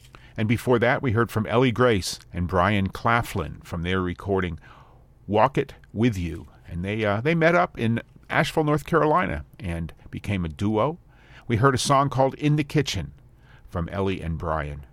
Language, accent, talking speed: English, American, 175 wpm